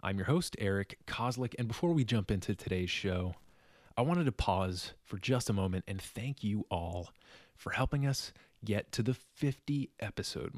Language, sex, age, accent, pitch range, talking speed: English, male, 20-39, American, 95-125 Hz, 175 wpm